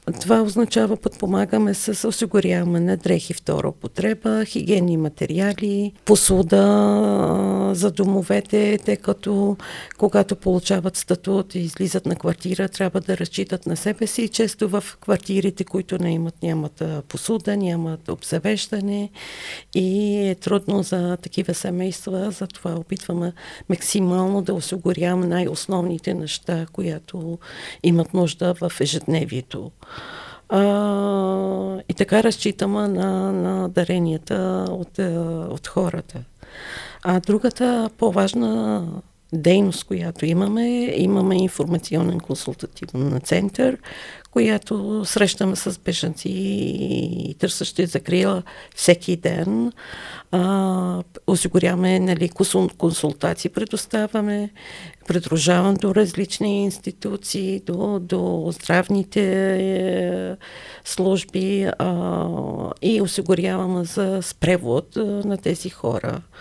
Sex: female